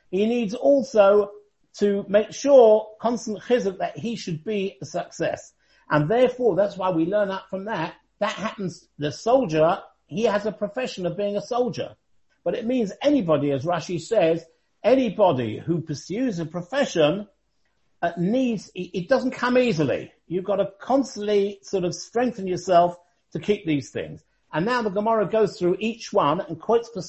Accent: British